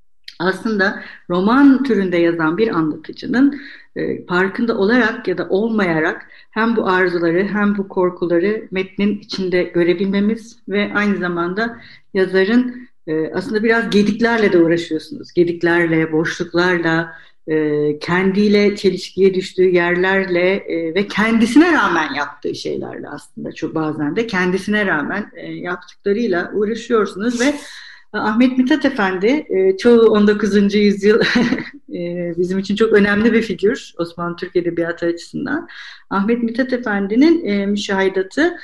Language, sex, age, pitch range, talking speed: Turkish, female, 60-79, 175-230 Hz, 115 wpm